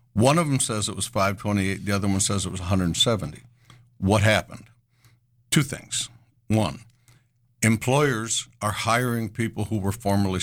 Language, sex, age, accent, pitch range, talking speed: English, male, 60-79, American, 95-120 Hz, 150 wpm